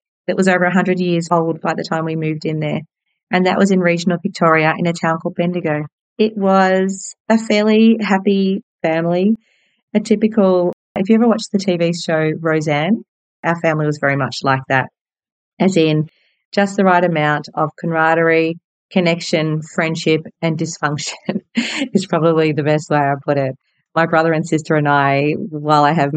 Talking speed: 175 wpm